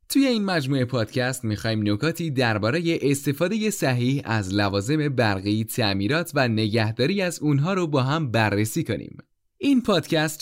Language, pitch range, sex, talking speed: Persian, 110-165 Hz, male, 140 wpm